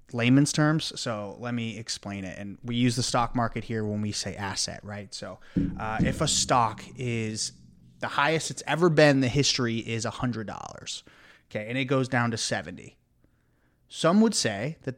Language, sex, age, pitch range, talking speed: English, male, 30-49, 110-135 Hz, 190 wpm